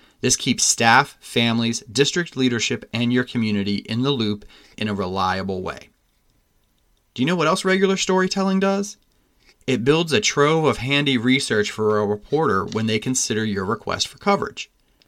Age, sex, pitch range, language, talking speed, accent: 30-49, male, 105-145 Hz, English, 165 wpm, American